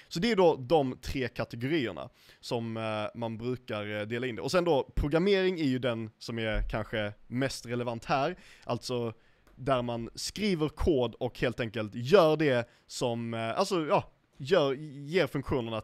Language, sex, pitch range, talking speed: Swedish, male, 110-140 Hz, 160 wpm